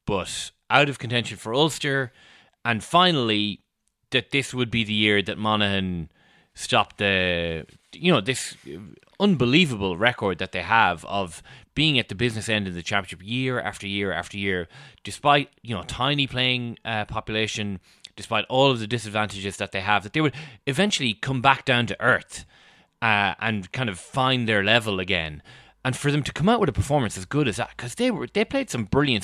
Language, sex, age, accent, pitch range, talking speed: English, male, 20-39, Irish, 100-135 Hz, 190 wpm